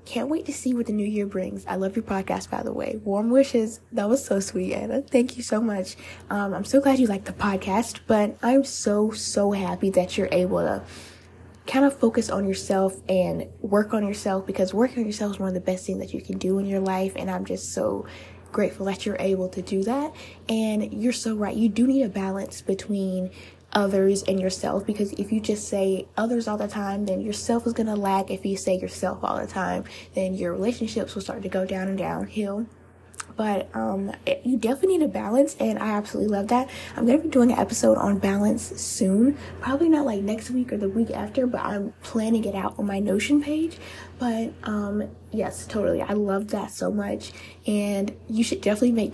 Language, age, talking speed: English, 10-29, 215 wpm